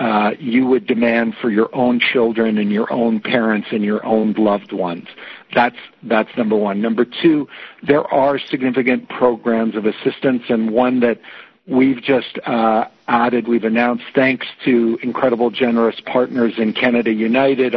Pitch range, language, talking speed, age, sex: 115-135 Hz, English, 155 wpm, 60-79, male